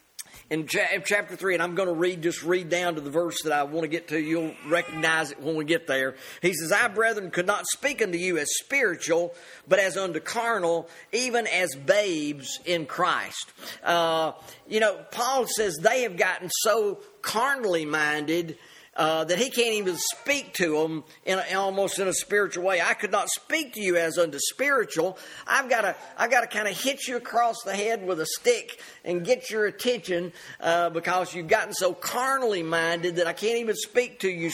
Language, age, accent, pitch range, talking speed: English, 50-69, American, 170-230 Hz, 195 wpm